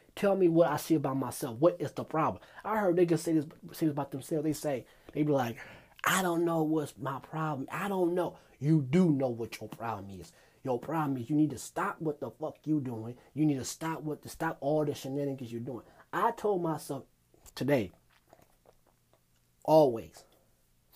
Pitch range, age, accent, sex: 115-165 Hz, 30-49, American, male